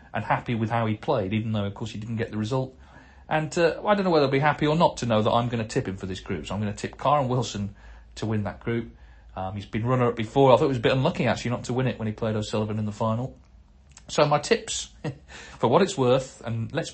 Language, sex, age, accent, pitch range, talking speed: English, male, 40-59, British, 105-130 Hz, 285 wpm